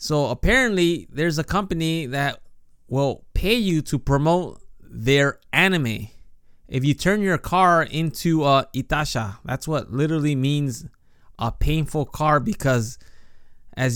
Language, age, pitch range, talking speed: English, 20-39, 130-170 Hz, 130 wpm